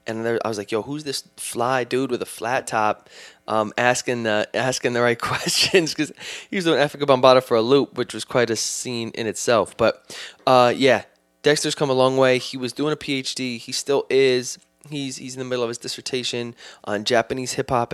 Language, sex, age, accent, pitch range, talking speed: English, male, 20-39, American, 110-130 Hz, 210 wpm